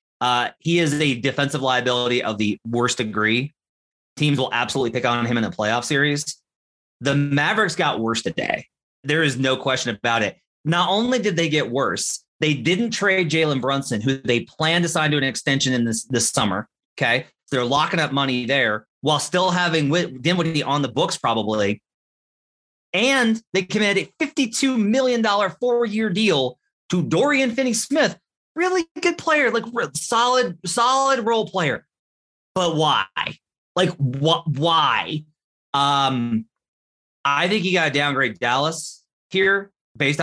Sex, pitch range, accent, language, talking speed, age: male, 130-185 Hz, American, English, 150 wpm, 30-49